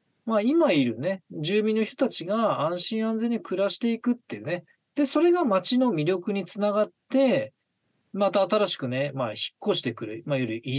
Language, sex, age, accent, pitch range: Japanese, male, 40-59, native, 145-235 Hz